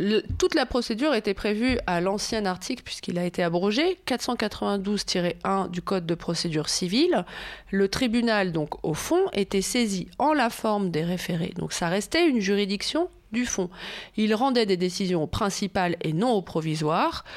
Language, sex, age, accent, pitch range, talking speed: French, female, 30-49, French, 180-235 Hz, 160 wpm